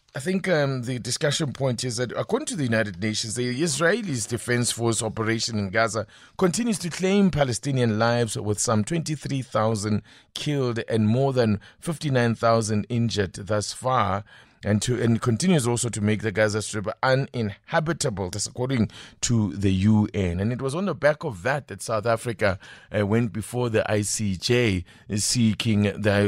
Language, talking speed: English, 160 wpm